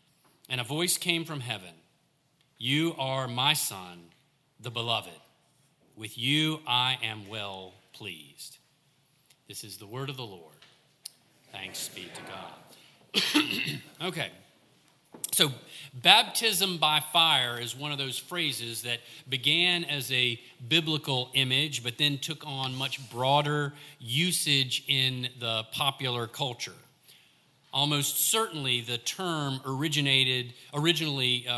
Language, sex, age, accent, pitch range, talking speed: English, male, 40-59, American, 120-150 Hz, 120 wpm